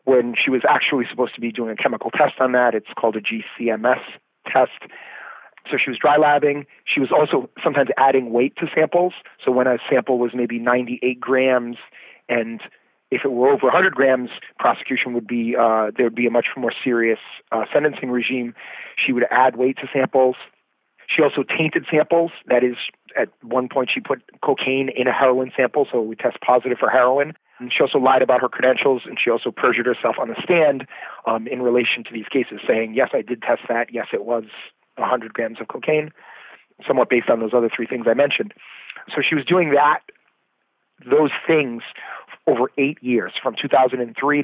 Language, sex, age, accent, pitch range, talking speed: English, male, 30-49, American, 120-135 Hz, 190 wpm